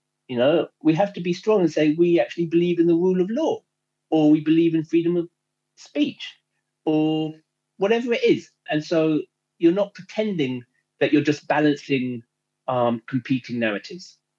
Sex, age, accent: male, 40-59, British